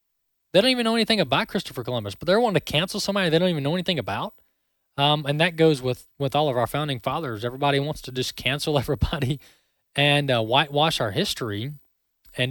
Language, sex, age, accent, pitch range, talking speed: English, male, 20-39, American, 115-155 Hz, 205 wpm